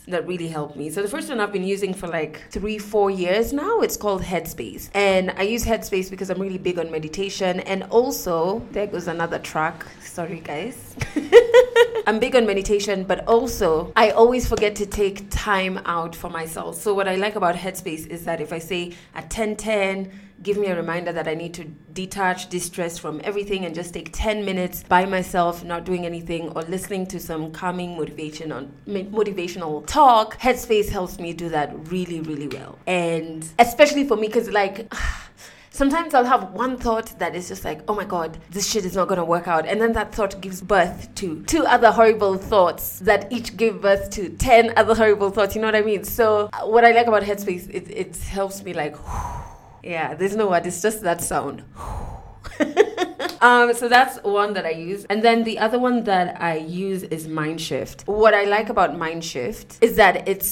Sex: female